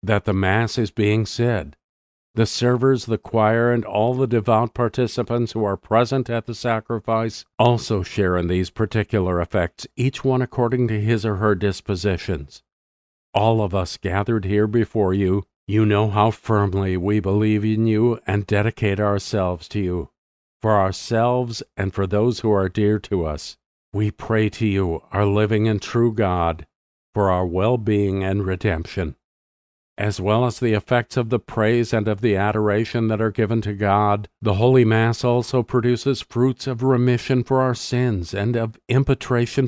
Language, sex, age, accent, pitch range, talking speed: English, male, 50-69, American, 100-120 Hz, 165 wpm